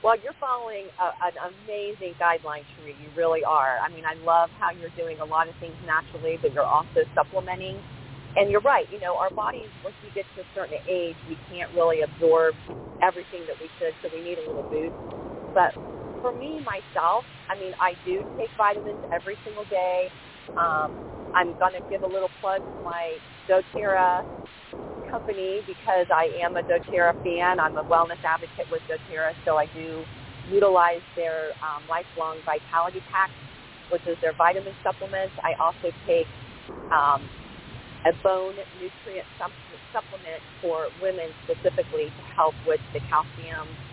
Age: 40-59